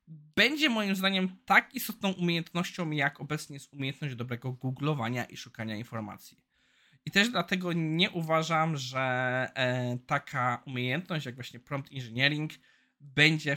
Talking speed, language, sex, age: 125 wpm, Polish, male, 20-39